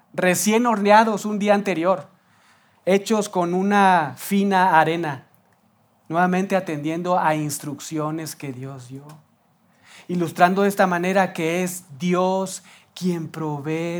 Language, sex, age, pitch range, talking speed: Spanish, male, 40-59, 155-190 Hz, 110 wpm